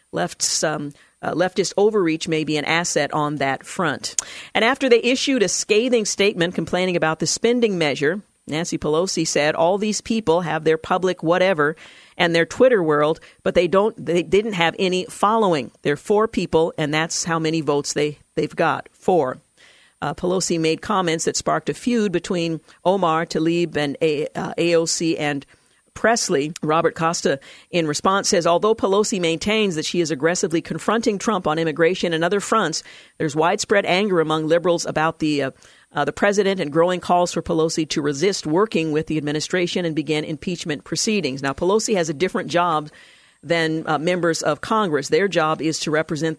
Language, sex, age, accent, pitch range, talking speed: English, female, 50-69, American, 155-190 Hz, 175 wpm